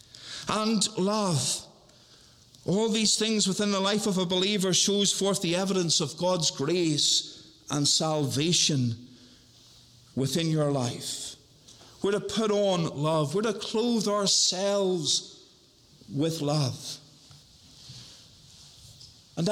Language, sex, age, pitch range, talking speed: English, male, 50-69, 175-235 Hz, 110 wpm